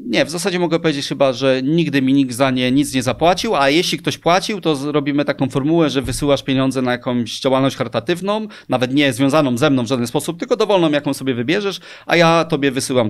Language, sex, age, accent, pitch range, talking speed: Polish, male, 30-49, native, 130-170 Hz, 215 wpm